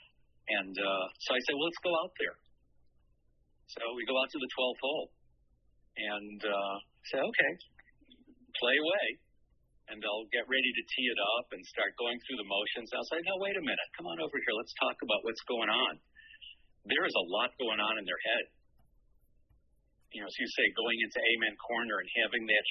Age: 50-69